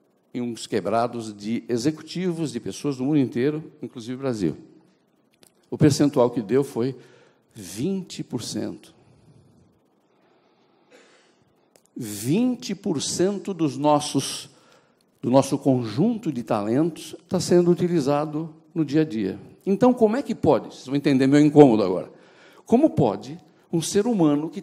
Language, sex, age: Portuguese, male, 60-79